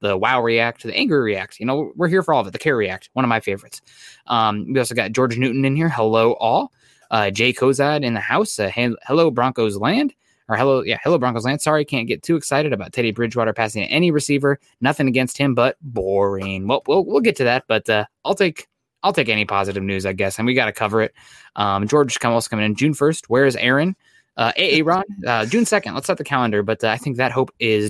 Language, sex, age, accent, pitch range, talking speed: English, male, 20-39, American, 110-145 Hz, 240 wpm